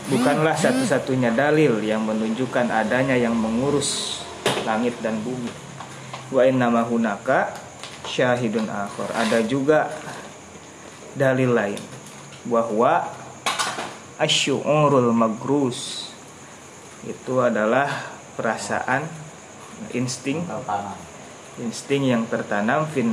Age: 30-49